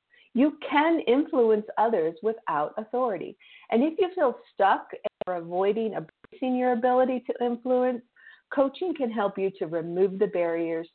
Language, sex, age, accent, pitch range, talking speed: English, female, 50-69, American, 185-245 Hz, 140 wpm